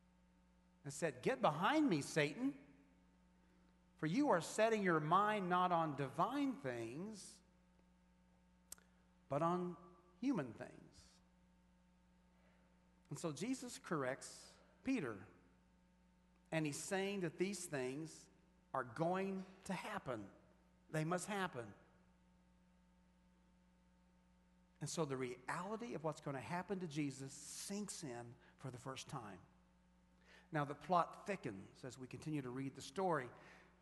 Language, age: English, 50-69